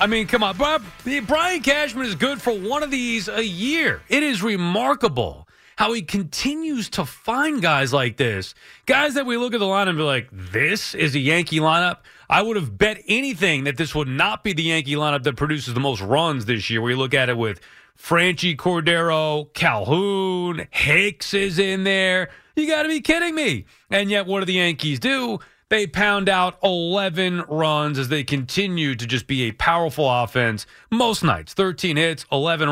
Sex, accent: male, American